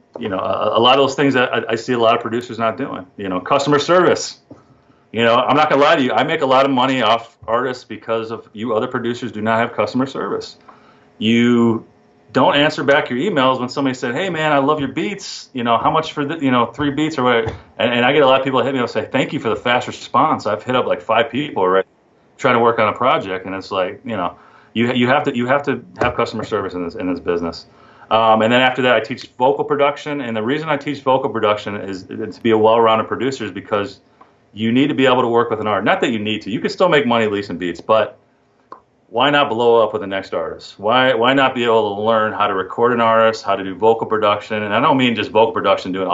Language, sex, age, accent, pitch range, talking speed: English, male, 40-59, American, 105-130 Hz, 270 wpm